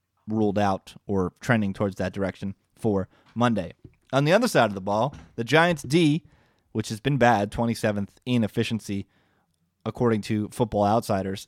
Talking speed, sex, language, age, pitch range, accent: 155 wpm, male, English, 20-39, 105-125 Hz, American